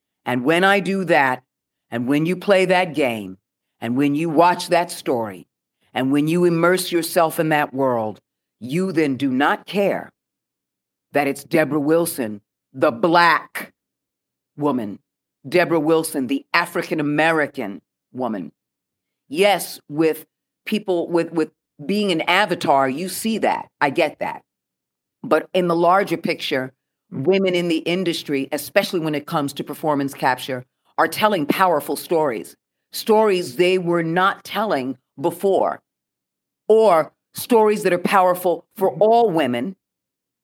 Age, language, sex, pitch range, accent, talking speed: 50-69, English, female, 145-185 Hz, American, 135 wpm